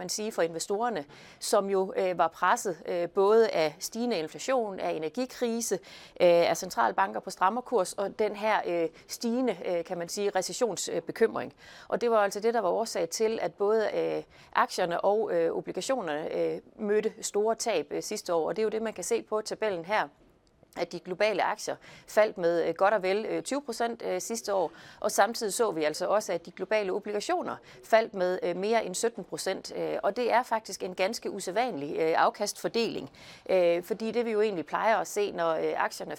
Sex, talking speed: female, 175 wpm